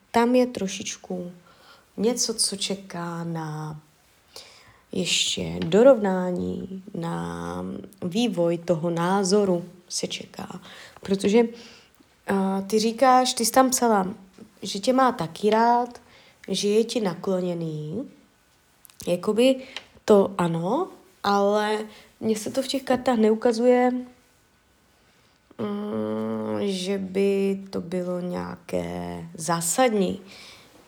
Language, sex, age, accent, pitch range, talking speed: Czech, female, 20-39, native, 185-250 Hz, 95 wpm